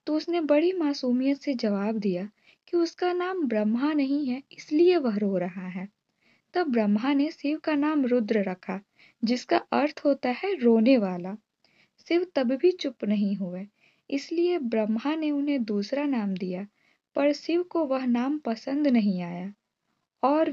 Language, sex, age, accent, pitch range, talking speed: Hindi, female, 20-39, native, 210-285 Hz, 160 wpm